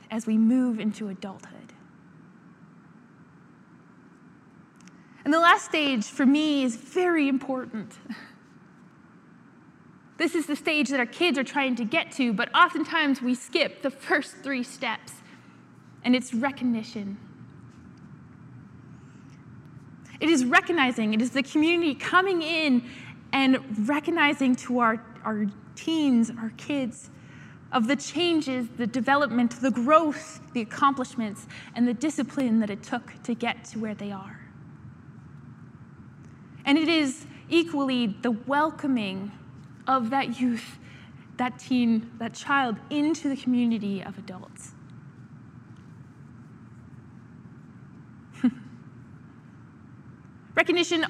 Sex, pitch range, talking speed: female, 230-290 Hz, 110 wpm